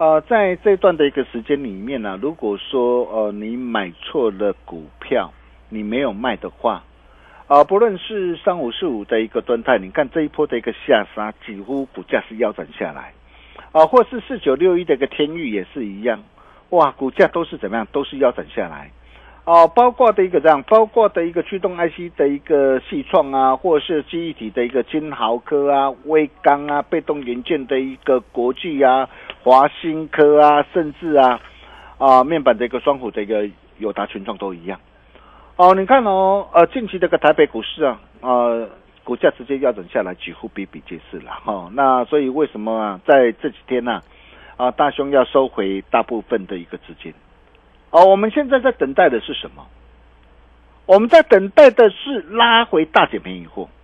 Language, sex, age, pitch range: Chinese, male, 50-69, 115-185 Hz